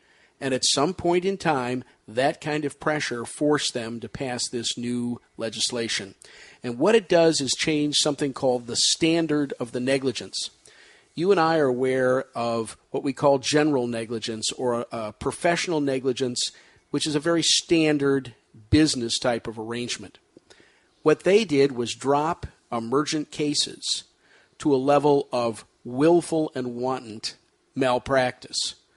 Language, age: English, 50-69